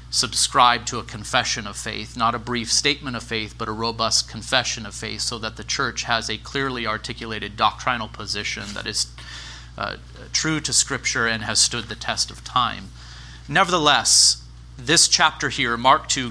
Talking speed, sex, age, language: 175 wpm, male, 30-49, English